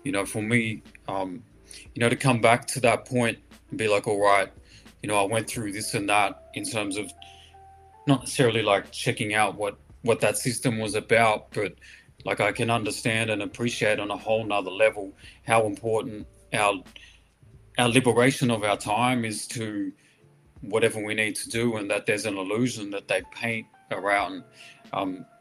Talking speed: 180 wpm